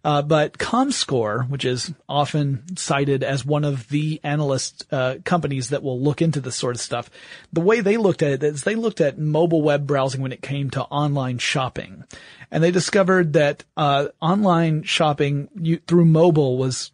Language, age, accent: English, 40-59, American